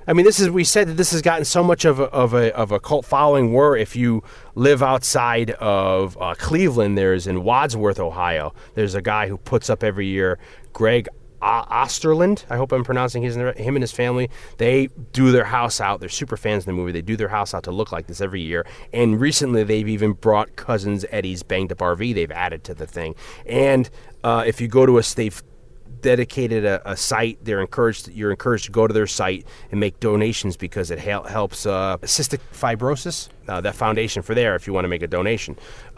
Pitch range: 105-130 Hz